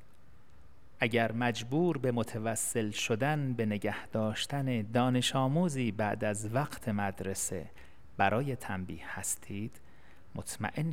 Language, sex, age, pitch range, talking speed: Persian, male, 30-49, 100-125 Hz, 100 wpm